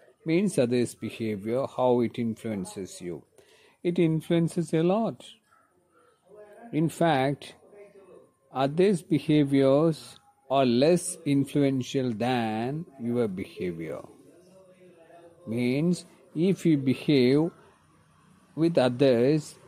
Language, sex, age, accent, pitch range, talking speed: Malayalam, male, 50-69, native, 130-170 Hz, 80 wpm